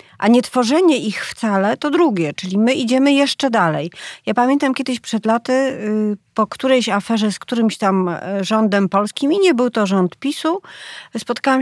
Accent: native